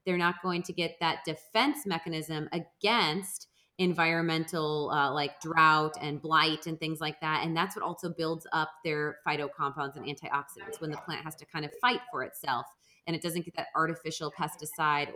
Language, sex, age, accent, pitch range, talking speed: English, female, 30-49, American, 150-180 Hz, 185 wpm